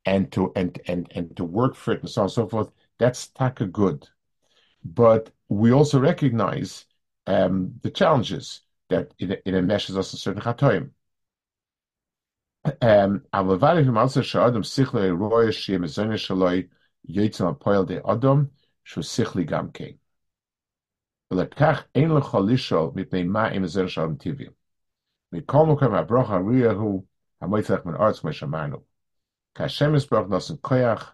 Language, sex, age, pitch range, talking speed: English, male, 50-69, 95-130 Hz, 75 wpm